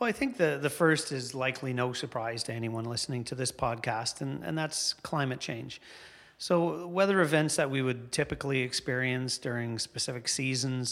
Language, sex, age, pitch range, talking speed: English, male, 40-59, 120-135 Hz, 175 wpm